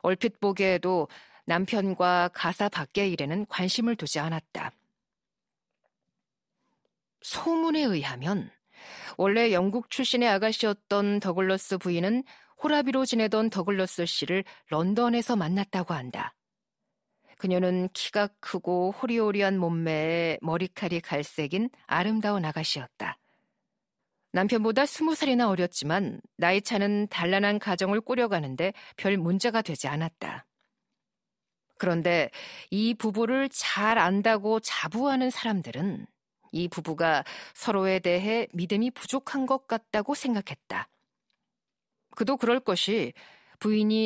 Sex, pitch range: female, 180-225 Hz